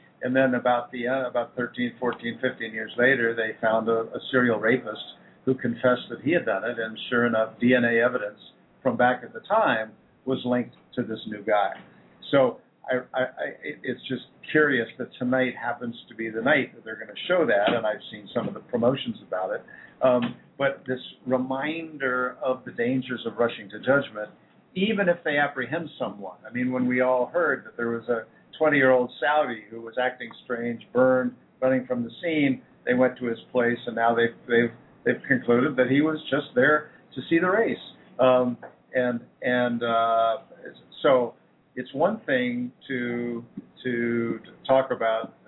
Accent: American